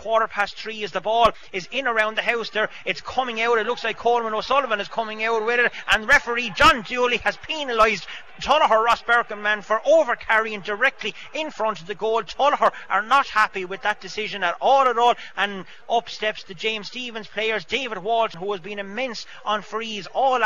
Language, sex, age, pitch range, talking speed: English, male, 30-49, 200-230 Hz, 200 wpm